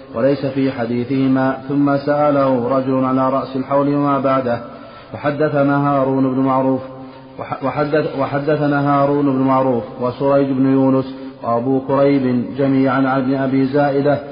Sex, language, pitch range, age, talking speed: male, Arabic, 130-140 Hz, 30-49, 120 wpm